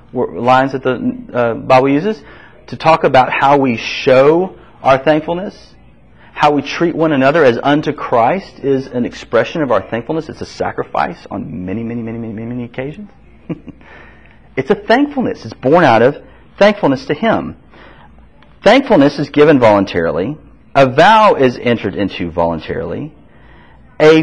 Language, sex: English, male